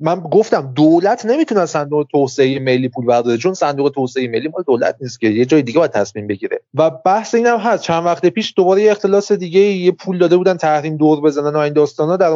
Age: 30-49